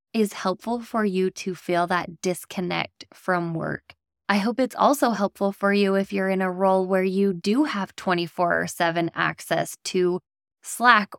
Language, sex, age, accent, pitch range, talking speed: English, female, 10-29, American, 175-210 Hz, 170 wpm